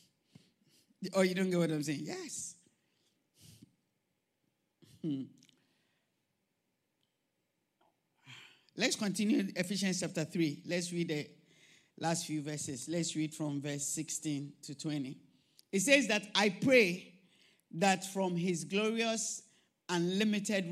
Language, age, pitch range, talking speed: English, 50-69, 160-195 Hz, 110 wpm